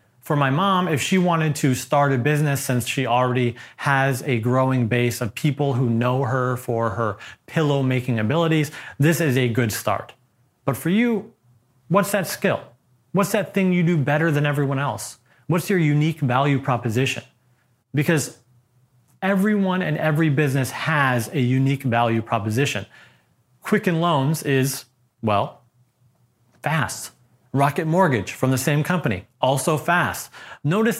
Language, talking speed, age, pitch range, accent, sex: English, 145 wpm, 30-49, 120-150 Hz, American, male